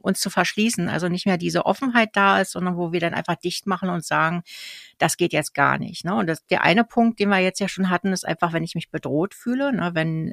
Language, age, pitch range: German, 60-79, 170-200 Hz